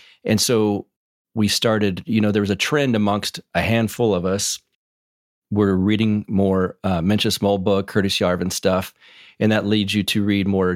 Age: 40-59